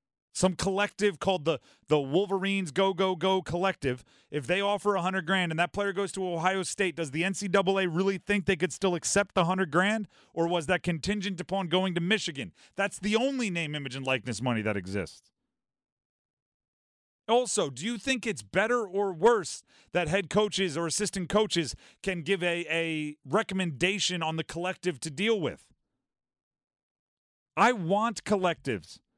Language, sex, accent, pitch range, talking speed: English, male, American, 170-210 Hz, 165 wpm